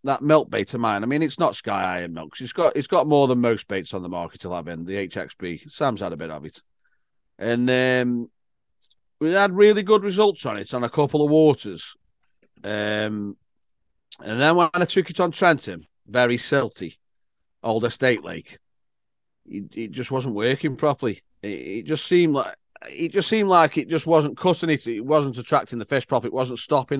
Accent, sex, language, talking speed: British, male, English, 200 wpm